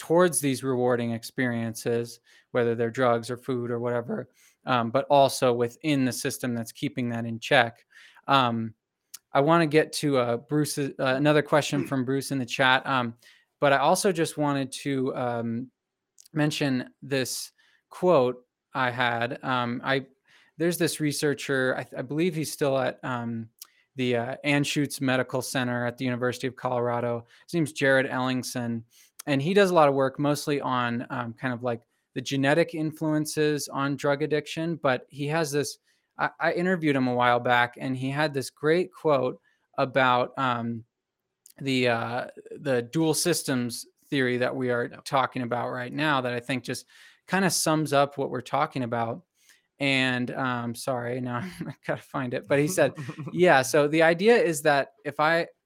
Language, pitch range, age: English, 125-150 Hz, 20-39